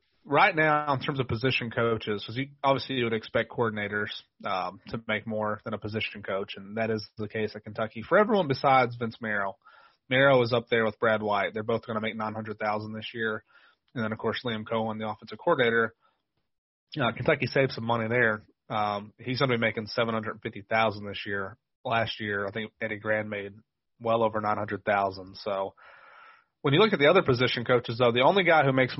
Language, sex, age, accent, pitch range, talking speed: English, male, 30-49, American, 110-130 Hz, 220 wpm